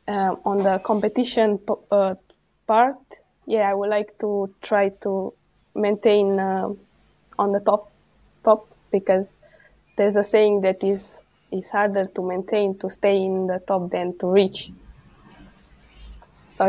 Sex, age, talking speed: female, 20-39, 135 wpm